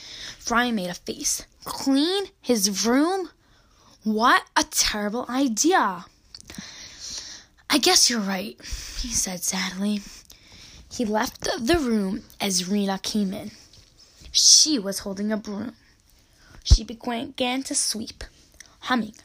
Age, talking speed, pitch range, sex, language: 10-29, 110 wpm, 200-265 Hz, female, English